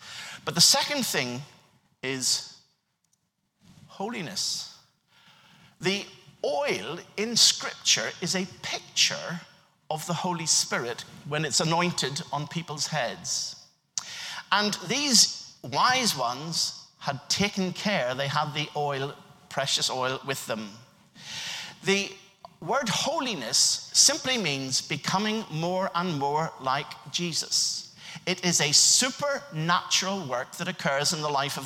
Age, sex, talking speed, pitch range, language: 50-69, male, 115 wpm, 150-200 Hz, English